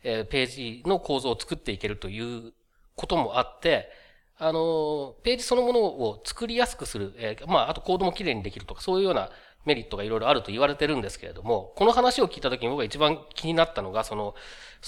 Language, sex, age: Japanese, male, 40-59